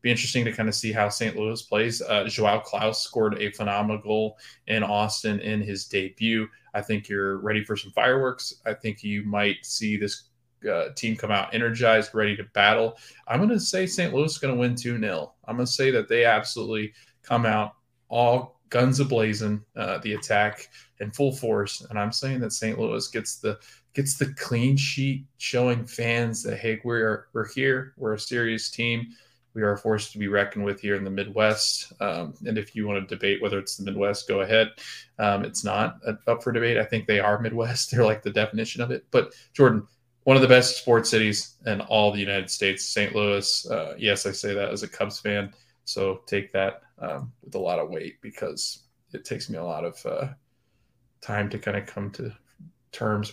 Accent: American